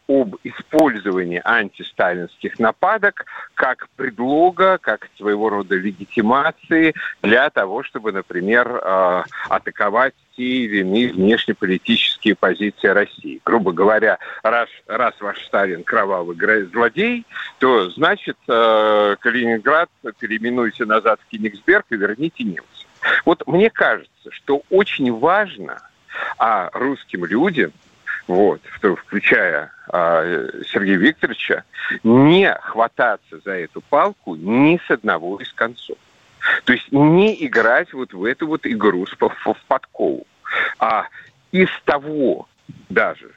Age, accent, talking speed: 50-69, native, 105 wpm